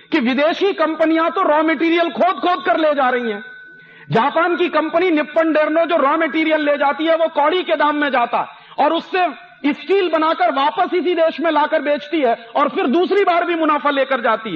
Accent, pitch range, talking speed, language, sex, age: native, 200-300 Hz, 200 wpm, Hindi, male, 40-59